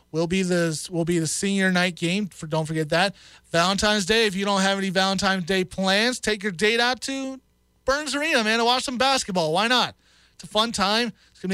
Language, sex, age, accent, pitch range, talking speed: English, male, 30-49, American, 165-210 Hz, 225 wpm